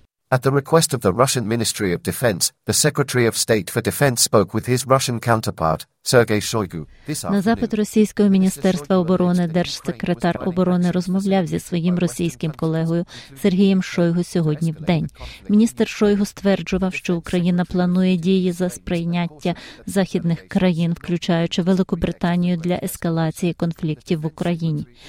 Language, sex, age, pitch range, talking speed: Ukrainian, female, 40-59, 165-195 Hz, 130 wpm